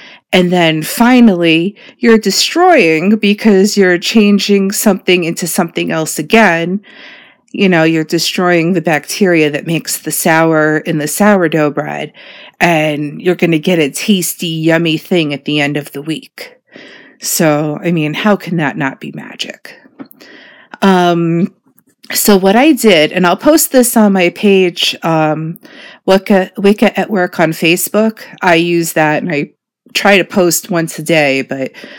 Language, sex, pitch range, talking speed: English, female, 160-210 Hz, 155 wpm